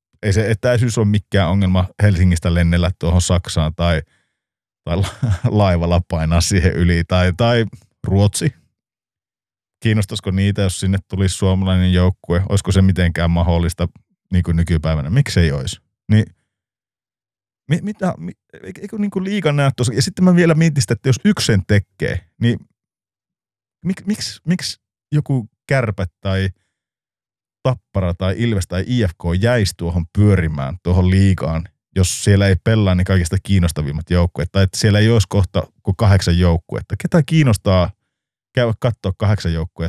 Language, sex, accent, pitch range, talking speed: Finnish, male, native, 90-120 Hz, 145 wpm